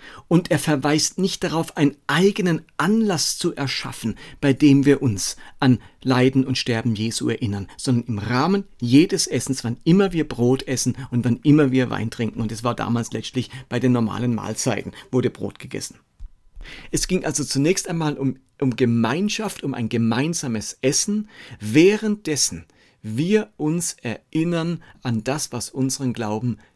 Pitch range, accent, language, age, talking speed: 120-150 Hz, German, German, 50-69, 155 wpm